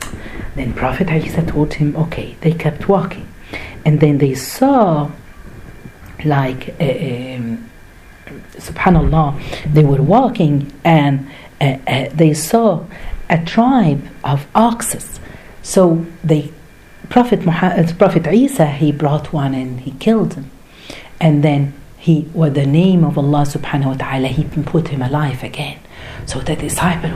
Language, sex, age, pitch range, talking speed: Arabic, female, 50-69, 140-180 Hz, 130 wpm